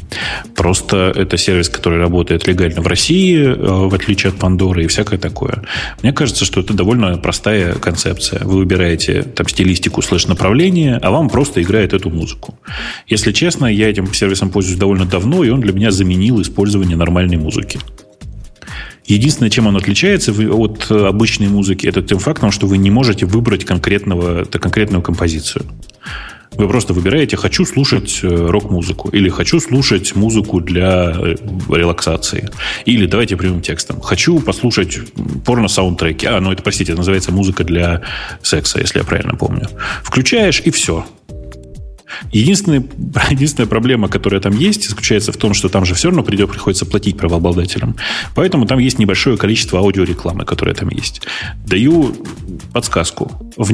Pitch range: 90-115 Hz